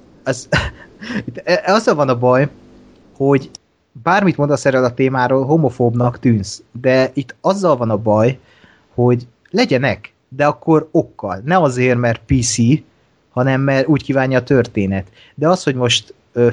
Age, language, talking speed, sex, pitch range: 30-49, Hungarian, 140 wpm, male, 120-150 Hz